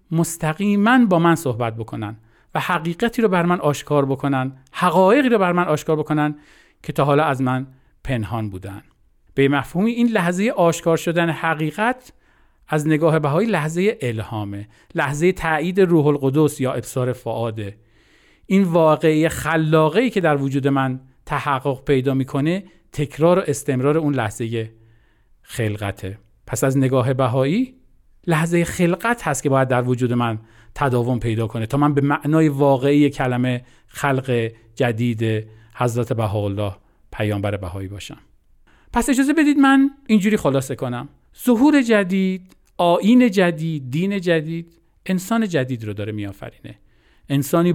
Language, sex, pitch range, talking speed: Persian, male, 120-170 Hz, 135 wpm